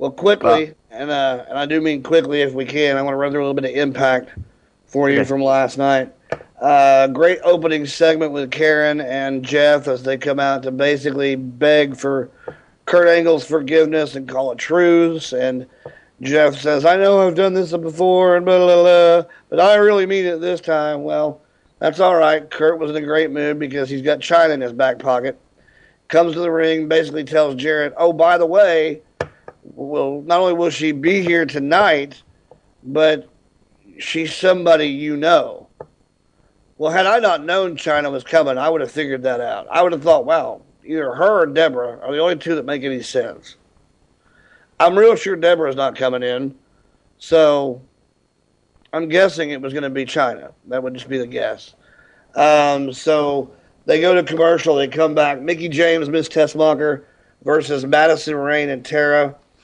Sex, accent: male, American